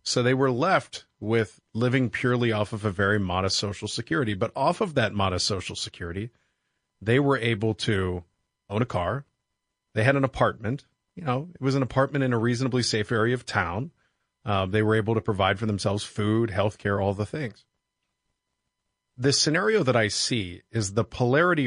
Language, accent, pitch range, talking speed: English, American, 100-125 Hz, 185 wpm